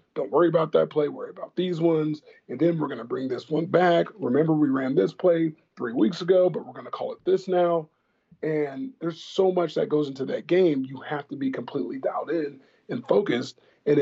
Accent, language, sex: American, English, male